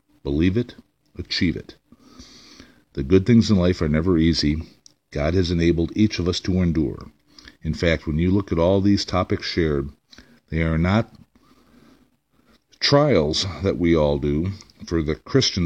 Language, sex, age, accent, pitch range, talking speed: English, male, 50-69, American, 80-100 Hz, 155 wpm